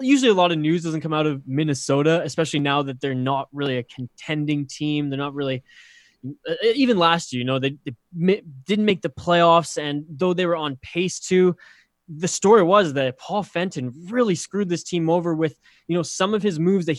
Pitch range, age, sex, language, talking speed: 145-180 Hz, 20-39, male, English, 210 wpm